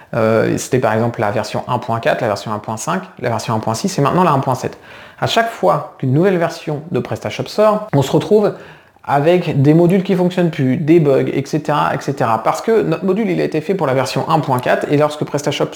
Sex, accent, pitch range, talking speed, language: male, French, 130-175 Hz, 205 wpm, French